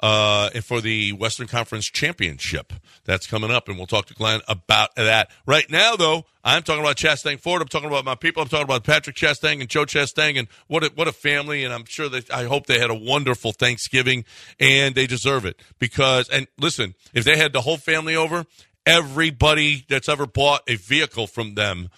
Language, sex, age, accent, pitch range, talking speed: English, male, 50-69, American, 115-150 Hz, 210 wpm